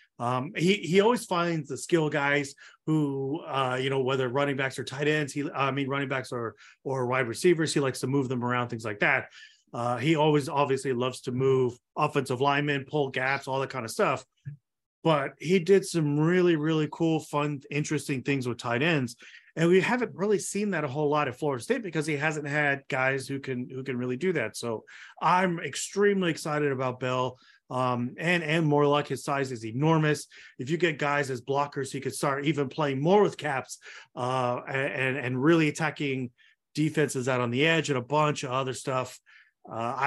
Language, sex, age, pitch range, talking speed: English, male, 30-49, 130-160 Hz, 200 wpm